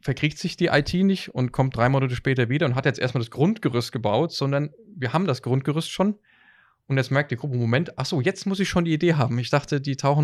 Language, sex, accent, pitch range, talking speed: German, male, German, 130-170 Hz, 245 wpm